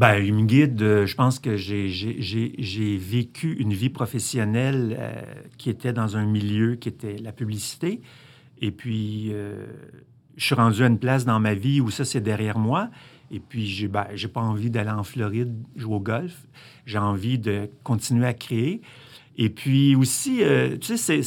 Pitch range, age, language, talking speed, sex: 110-140 Hz, 50-69, French, 190 wpm, male